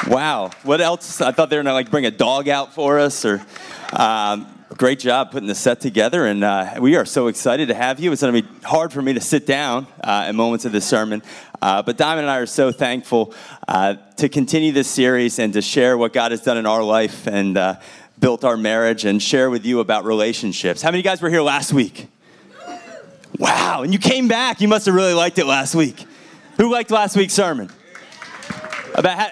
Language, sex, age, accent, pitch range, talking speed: English, male, 30-49, American, 115-160 Hz, 225 wpm